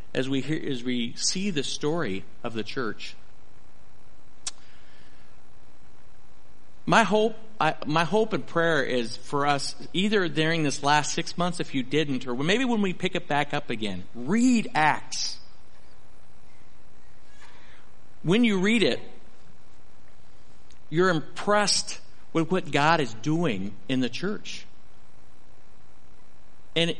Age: 50-69